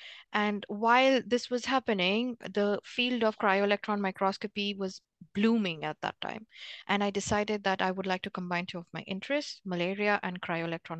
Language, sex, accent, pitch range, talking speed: English, female, Indian, 180-220 Hz, 170 wpm